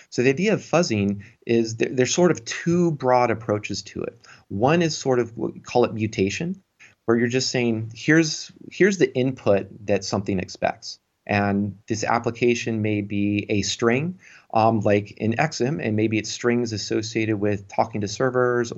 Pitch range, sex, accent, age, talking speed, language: 100-120 Hz, male, American, 30-49, 175 wpm, English